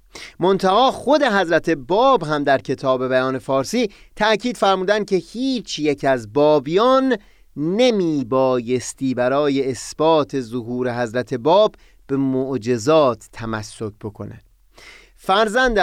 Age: 30-49